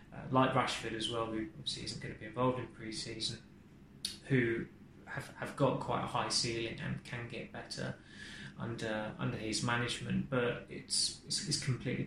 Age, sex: 20-39, male